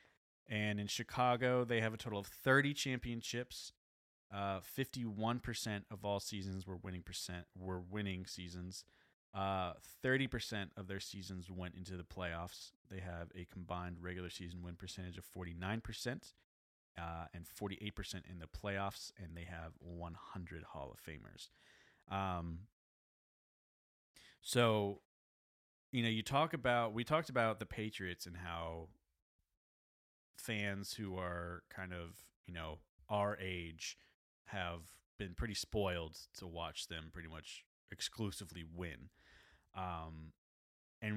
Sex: male